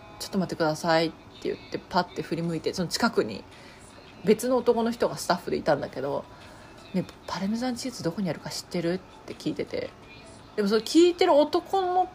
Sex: female